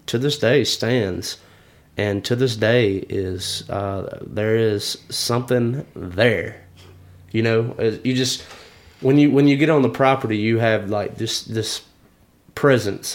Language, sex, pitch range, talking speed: English, male, 105-125 Hz, 150 wpm